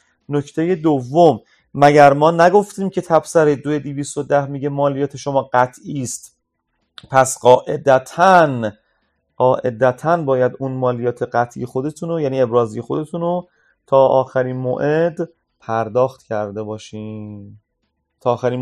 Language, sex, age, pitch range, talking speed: Persian, male, 30-49, 125-160 Hz, 100 wpm